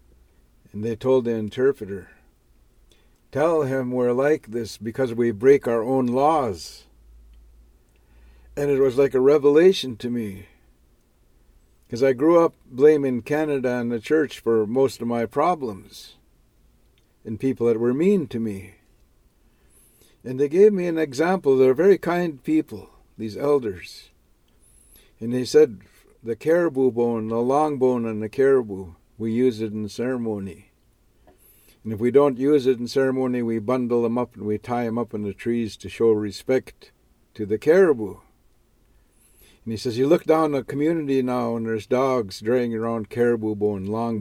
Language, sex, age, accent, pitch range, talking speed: English, male, 60-79, American, 105-135 Hz, 160 wpm